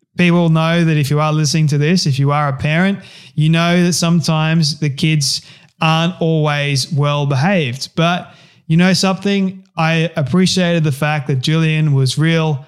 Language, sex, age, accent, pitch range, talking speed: English, male, 20-39, Australian, 145-165 Hz, 170 wpm